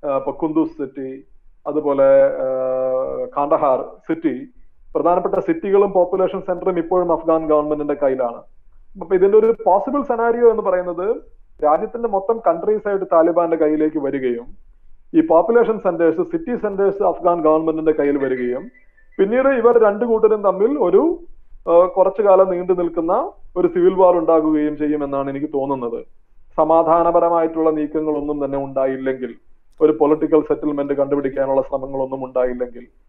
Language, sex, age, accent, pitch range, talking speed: Malayalam, male, 30-49, native, 150-220 Hz, 115 wpm